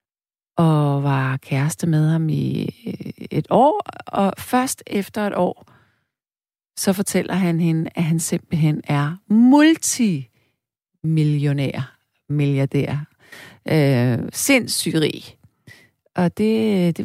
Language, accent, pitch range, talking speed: Danish, native, 150-210 Hz, 100 wpm